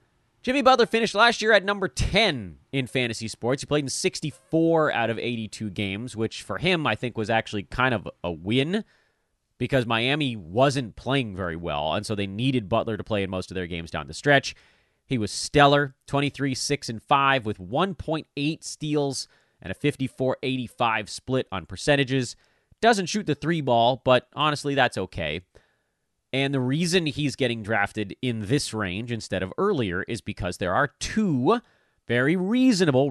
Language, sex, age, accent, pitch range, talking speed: English, male, 30-49, American, 100-145 Hz, 165 wpm